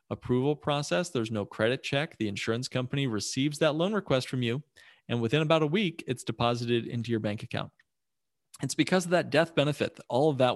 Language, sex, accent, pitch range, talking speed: English, male, American, 115-145 Hz, 205 wpm